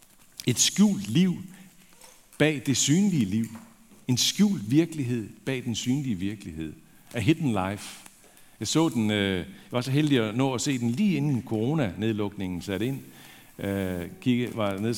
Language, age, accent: Danish, 60-79, native